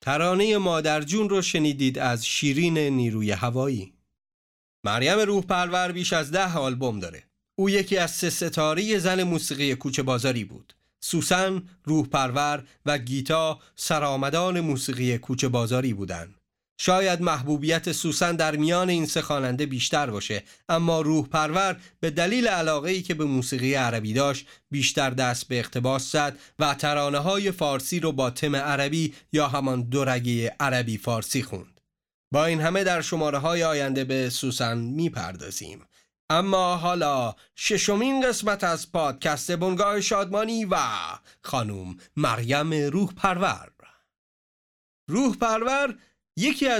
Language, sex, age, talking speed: Persian, male, 40-59, 130 wpm